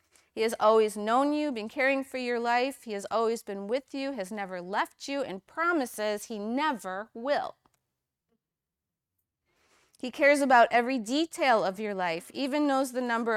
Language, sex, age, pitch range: English, female, 30-49, 185-260 Hz